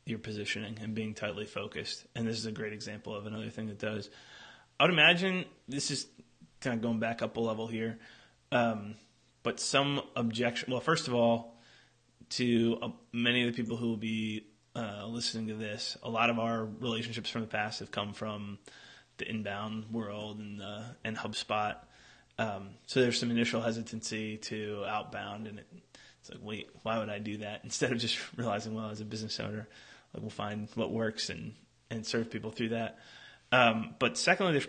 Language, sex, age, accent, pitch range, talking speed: English, male, 20-39, American, 110-120 Hz, 190 wpm